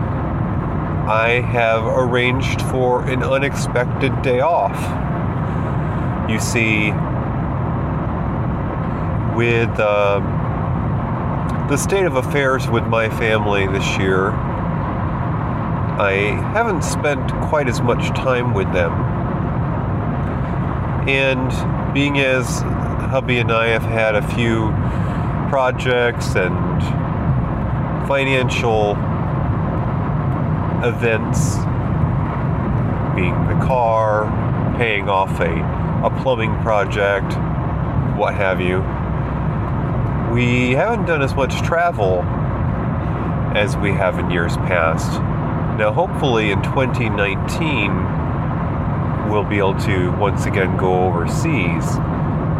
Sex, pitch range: male, 110-135 Hz